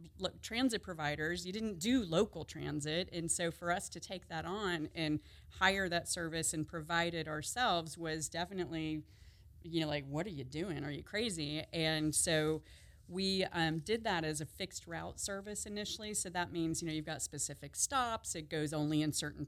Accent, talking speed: American, 190 wpm